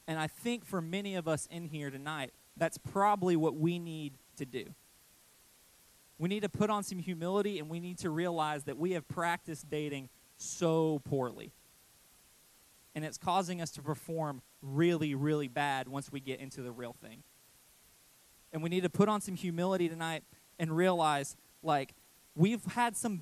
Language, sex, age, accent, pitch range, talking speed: English, male, 20-39, American, 150-190 Hz, 175 wpm